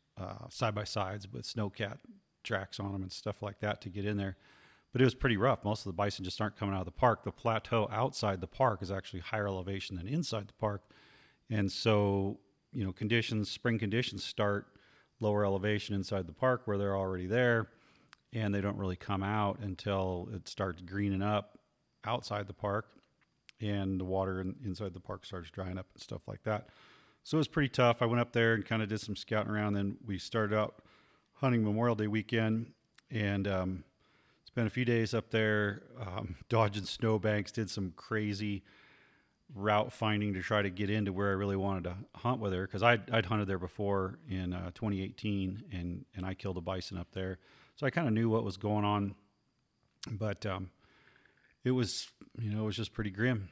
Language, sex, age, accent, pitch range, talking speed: English, male, 40-59, American, 95-110 Hz, 200 wpm